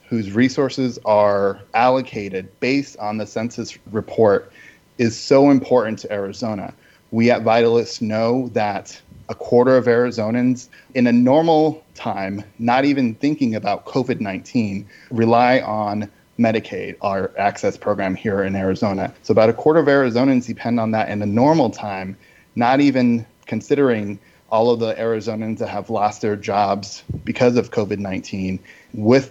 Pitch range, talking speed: 105-125 Hz, 145 wpm